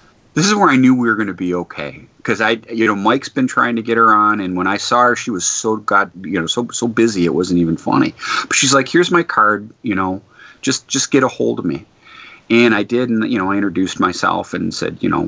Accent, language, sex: American, English, male